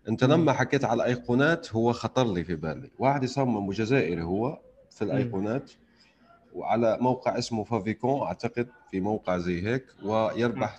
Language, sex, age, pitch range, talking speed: Arabic, male, 30-49, 95-130 Hz, 145 wpm